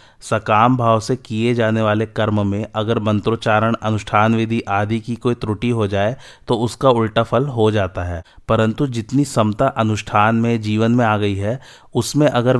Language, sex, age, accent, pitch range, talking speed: Hindi, male, 30-49, native, 105-130 Hz, 175 wpm